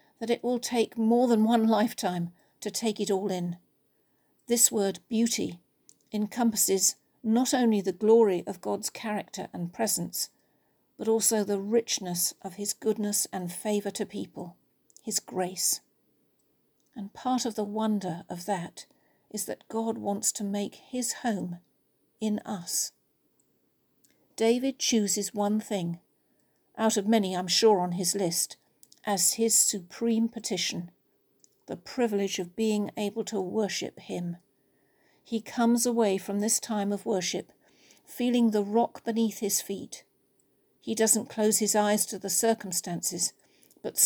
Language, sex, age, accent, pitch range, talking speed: English, female, 50-69, British, 195-230 Hz, 140 wpm